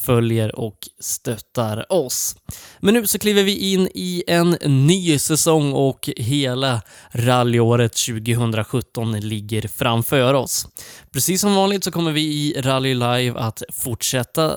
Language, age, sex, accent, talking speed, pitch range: Swedish, 20-39, male, native, 130 wpm, 115-150 Hz